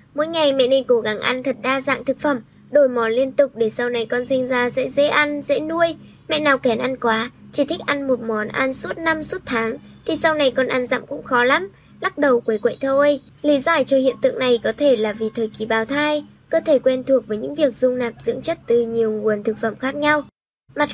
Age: 10-29